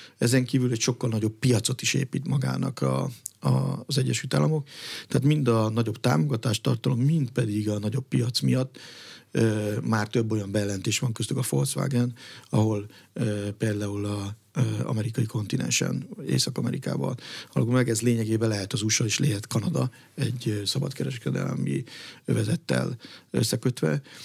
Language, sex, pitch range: Hungarian, male, 105-125 Hz